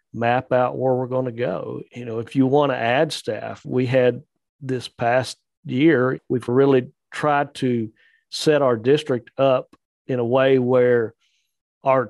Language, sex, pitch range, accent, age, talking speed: English, male, 120-135 Hz, American, 40-59, 165 wpm